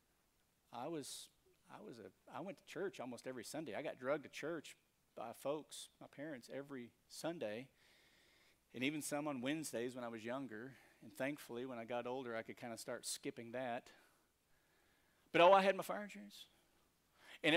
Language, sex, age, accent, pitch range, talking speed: English, male, 40-59, American, 125-205 Hz, 180 wpm